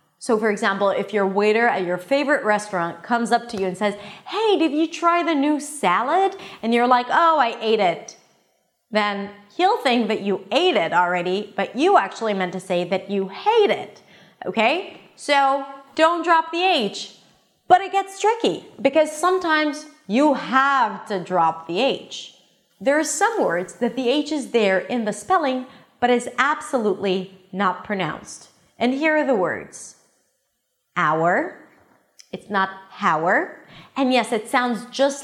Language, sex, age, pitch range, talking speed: English, female, 30-49, 195-285 Hz, 165 wpm